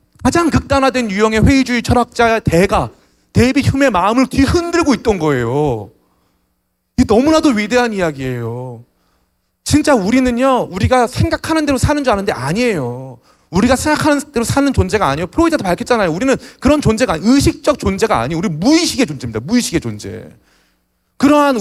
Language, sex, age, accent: Korean, male, 30-49, native